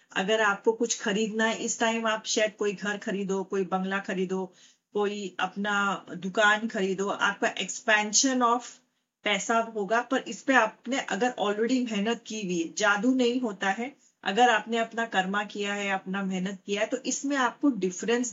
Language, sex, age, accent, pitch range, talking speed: Hindi, female, 40-59, native, 200-245 Hz, 165 wpm